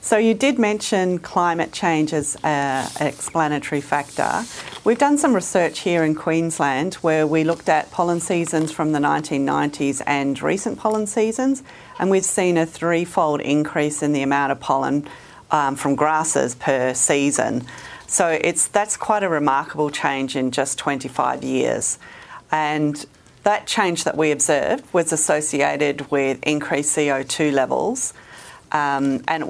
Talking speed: 145 wpm